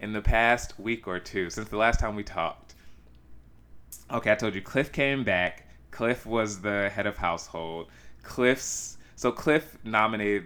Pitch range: 90-120 Hz